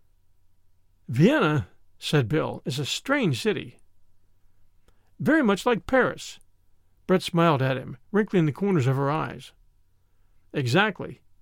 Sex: male